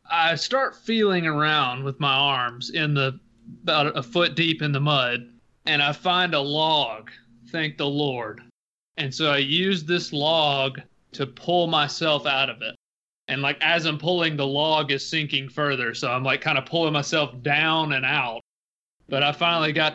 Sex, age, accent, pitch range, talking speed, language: male, 30-49, American, 135-160 Hz, 180 wpm, English